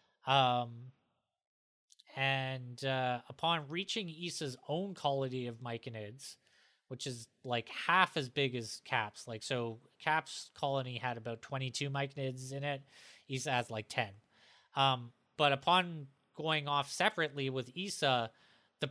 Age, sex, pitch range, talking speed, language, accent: 30-49, male, 125-155 Hz, 130 wpm, English, American